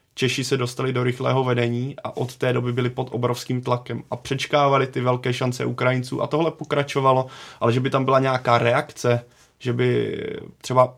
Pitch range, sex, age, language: 120-130 Hz, male, 20-39, Czech